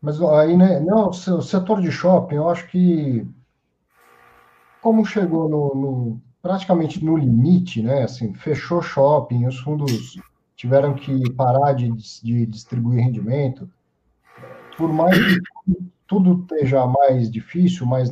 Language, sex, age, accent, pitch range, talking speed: English, male, 50-69, Brazilian, 130-180 Hz, 130 wpm